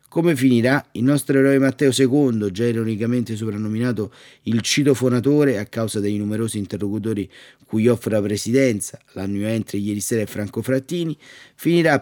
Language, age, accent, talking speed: Italian, 30-49, native, 145 wpm